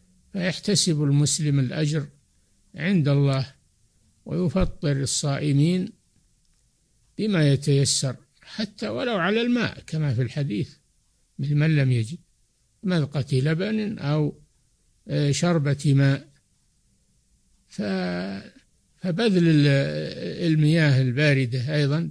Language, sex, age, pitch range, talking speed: Arabic, male, 60-79, 125-165 Hz, 75 wpm